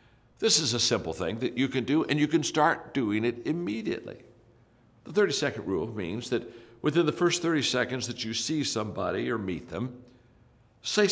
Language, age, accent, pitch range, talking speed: English, 60-79, American, 110-130 Hz, 185 wpm